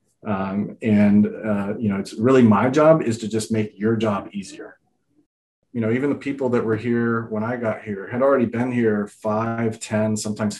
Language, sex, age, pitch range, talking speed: English, male, 30-49, 105-120 Hz, 200 wpm